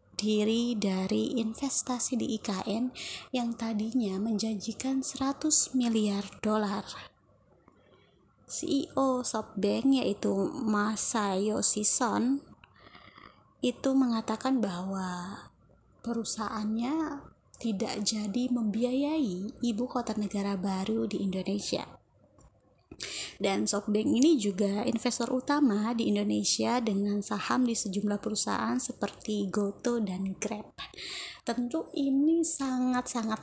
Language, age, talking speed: Indonesian, 20-39, 90 wpm